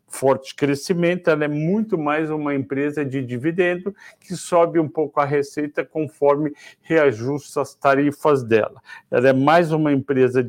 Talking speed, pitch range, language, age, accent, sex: 150 wpm, 135-170 Hz, Portuguese, 60-79, Brazilian, male